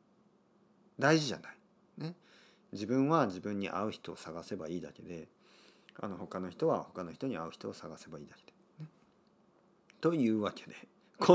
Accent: native